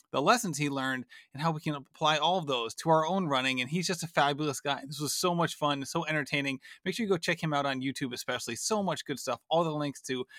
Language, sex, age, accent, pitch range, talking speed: English, male, 30-49, American, 140-185 Hz, 270 wpm